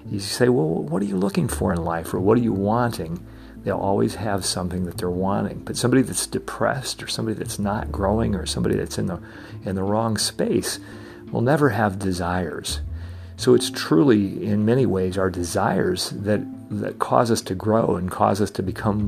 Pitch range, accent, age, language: 95-115 Hz, American, 50-69, English